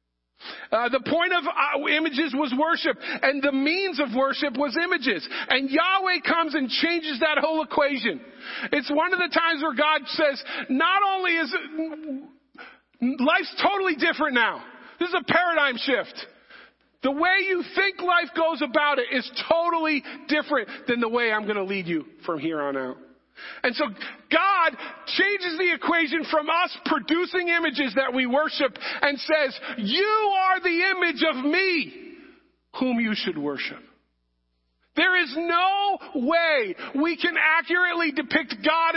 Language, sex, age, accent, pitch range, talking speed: English, male, 40-59, American, 250-335 Hz, 150 wpm